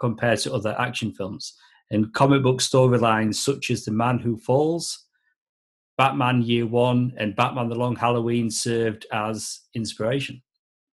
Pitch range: 115-135 Hz